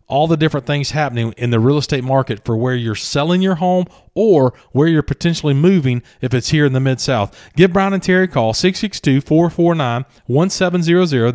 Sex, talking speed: male, 180 wpm